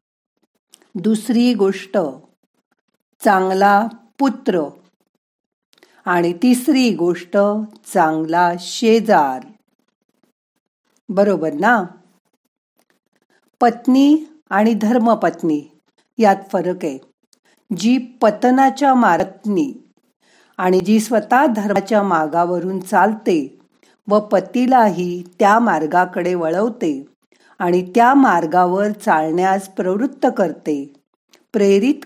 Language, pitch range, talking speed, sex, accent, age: Marathi, 180-240 Hz, 70 wpm, female, native, 50-69